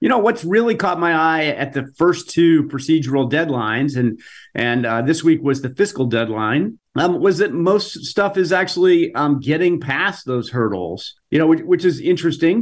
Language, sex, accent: English, male, American